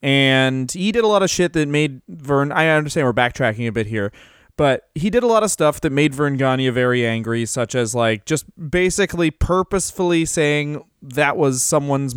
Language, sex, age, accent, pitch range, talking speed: English, male, 20-39, American, 135-175 Hz, 195 wpm